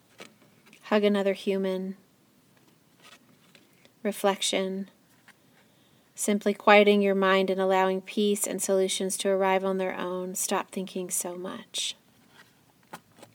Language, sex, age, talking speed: English, female, 30-49, 95 wpm